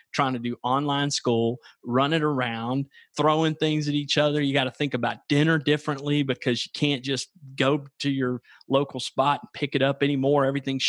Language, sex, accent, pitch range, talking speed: English, male, American, 125-155 Hz, 195 wpm